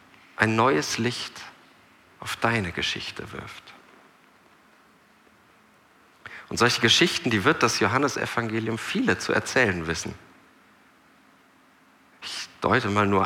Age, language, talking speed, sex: 40-59, German, 100 wpm, male